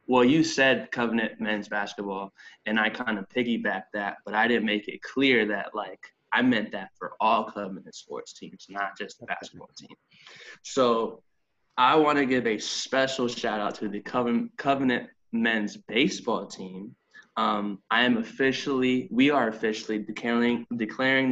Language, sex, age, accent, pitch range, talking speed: English, male, 10-29, American, 105-125 Hz, 160 wpm